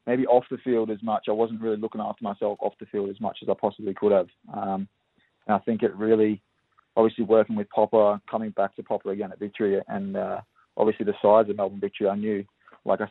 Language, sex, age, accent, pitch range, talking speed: English, male, 20-39, Australian, 100-110 Hz, 235 wpm